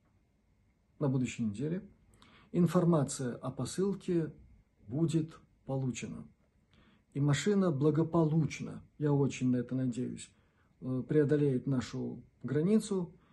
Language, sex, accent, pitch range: Russian, male, native, 110-160 Hz